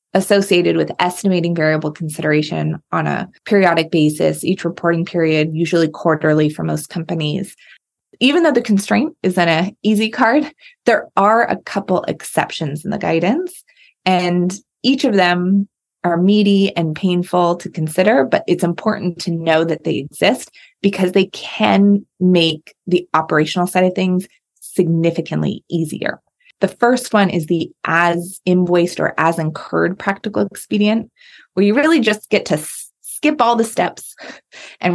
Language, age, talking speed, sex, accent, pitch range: English, 20-39, 145 wpm, female, American, 165-210 Hz